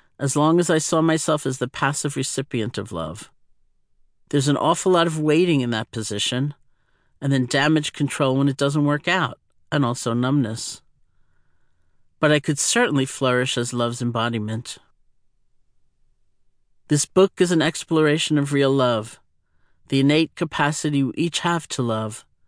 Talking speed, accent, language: 150 wpm, American, English